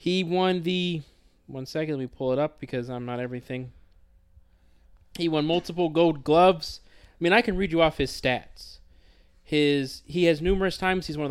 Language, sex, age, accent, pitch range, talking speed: English, male, 20-39, American, 120-170 Hz, 195 wpm